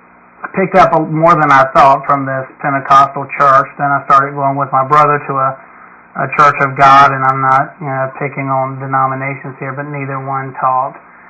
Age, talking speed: 30-49, 200 wpm